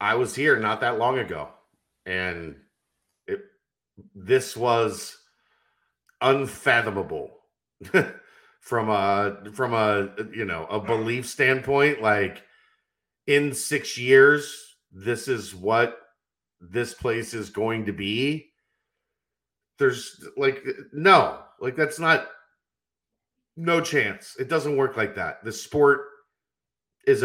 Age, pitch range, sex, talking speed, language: 50-69, 105-150 Hz, male, 110 wpm, English